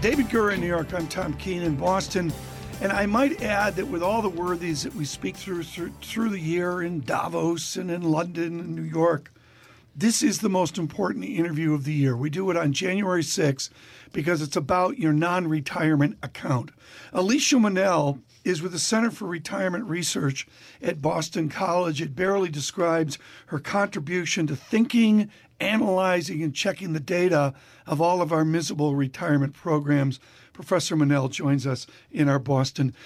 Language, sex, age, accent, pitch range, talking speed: English, male, 50-69, American, 155-200 Hz, 170 wpm